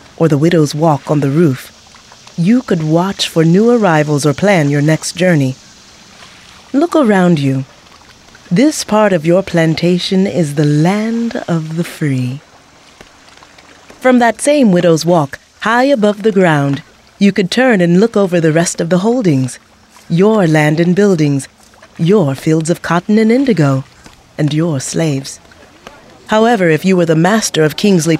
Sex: female